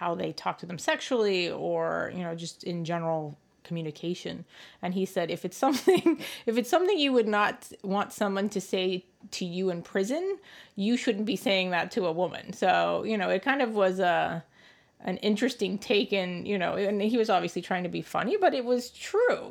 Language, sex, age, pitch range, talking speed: English, female, 30-49, 170-205 Hz, 205 wpm